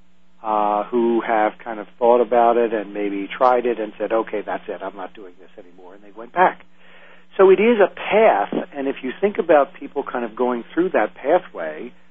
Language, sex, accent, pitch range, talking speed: English, male, American, 95-125 Hz, 215 wpm